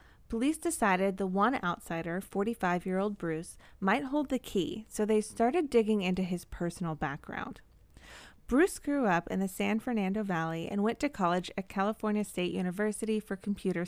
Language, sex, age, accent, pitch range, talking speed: English, female, 30-49, American, 180-230 Hz, 160 wpm